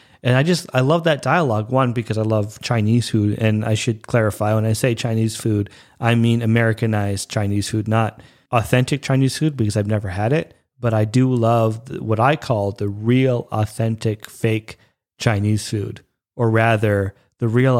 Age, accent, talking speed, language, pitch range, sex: 30-49, American, 180 wpm, English, 110-140 Hz, male